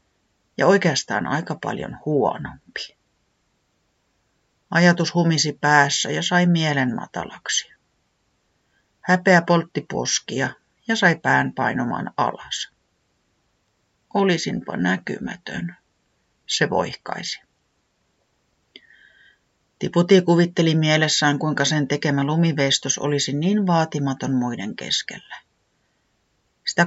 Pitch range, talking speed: 145-185 Hz, 85 wpm